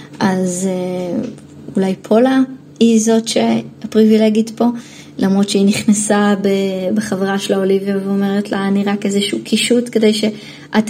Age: 20-39